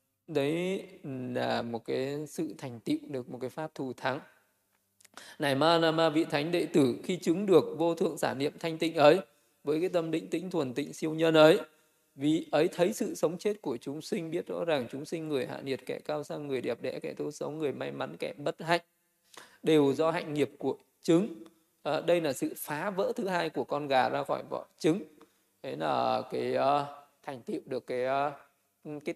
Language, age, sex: Vietnamese, 20-39, male